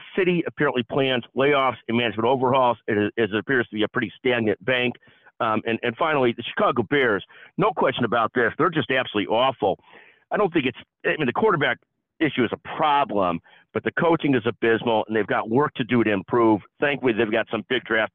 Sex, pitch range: male, 115-145 Hz